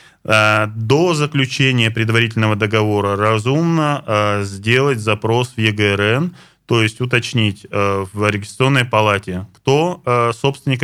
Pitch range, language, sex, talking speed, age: 110-140 Hz, Russian, male, 95 wpm, 20-39